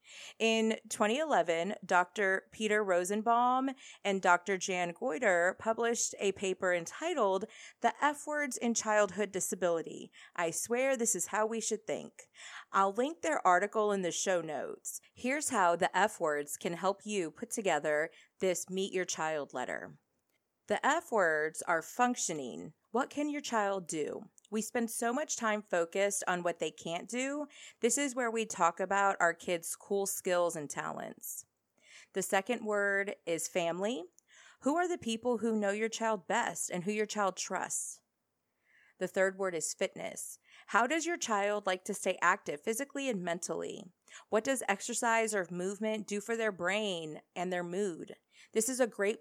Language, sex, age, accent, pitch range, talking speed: English, female, 30-49, American, 180-230 Hz, 165 wpm